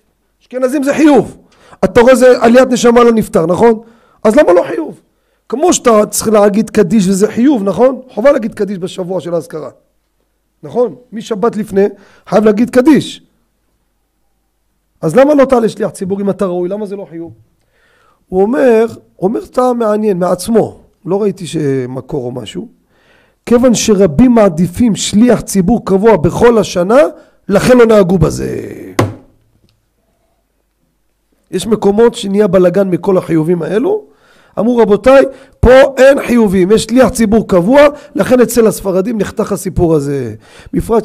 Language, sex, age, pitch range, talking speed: Hebrew, male, 40-59, 180-235 Hz, 140 wpm